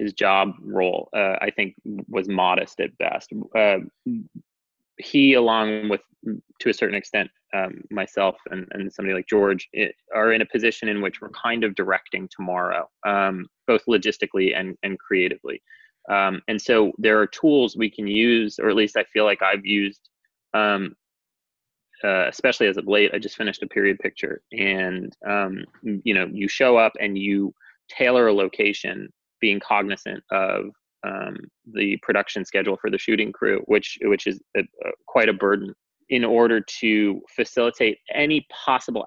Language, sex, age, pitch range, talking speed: English, male, 20-39, 100-125 Hz, 165 wpm